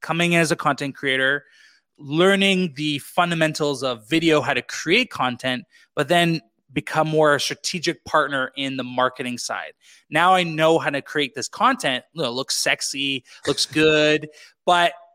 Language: English